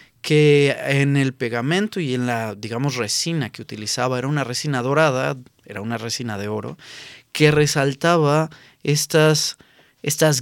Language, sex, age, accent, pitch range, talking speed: Spanish, male, 30-49, Mexican, 130-160 Hz, 140 wpm